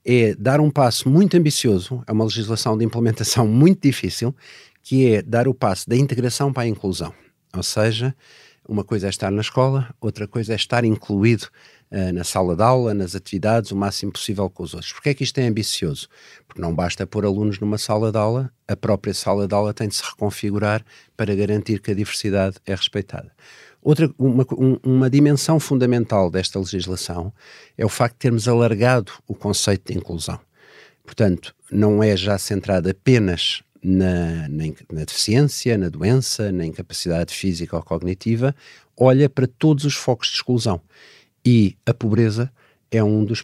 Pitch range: 100-125 Hz